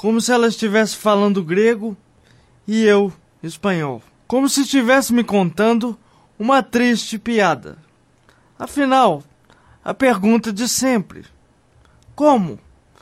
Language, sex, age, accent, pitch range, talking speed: Portuguese, male, 20-39, Brazilian, 190-260 Hz, 105 wpm